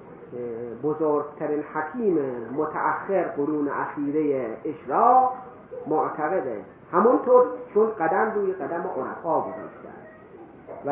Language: Persian